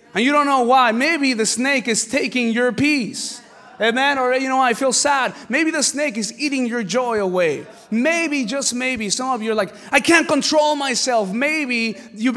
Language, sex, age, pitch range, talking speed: English, male, 20-39, 195-270 Hz, 200 wpm